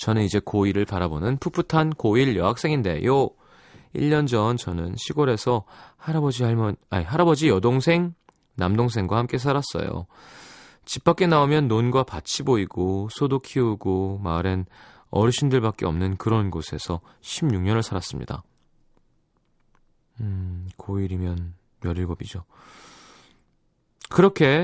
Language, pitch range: Korean, 100-155 Hz